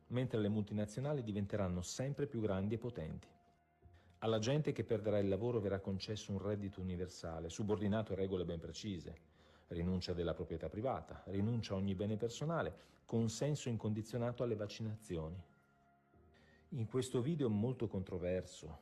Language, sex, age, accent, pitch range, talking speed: Italian, male, 40-59, native, 85-110 Hz, 135 wpm